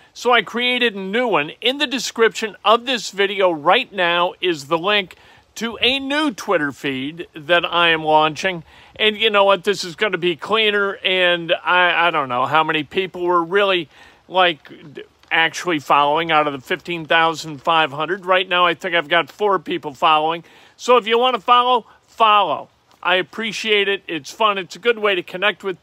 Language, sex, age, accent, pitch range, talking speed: English, male, 40-59, American, 165-210 Hz, 190 wpm